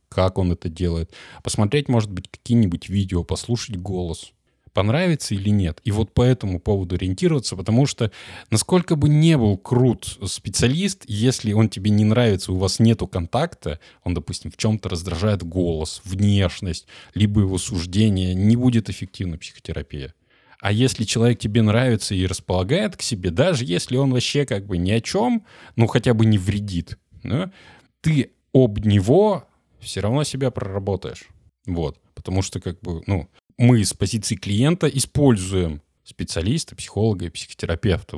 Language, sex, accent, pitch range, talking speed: Russian, male, native, 90-125 Hz, 150 wpm